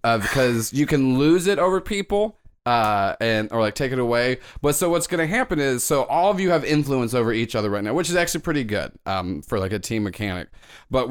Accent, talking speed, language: American, 245 wpm, English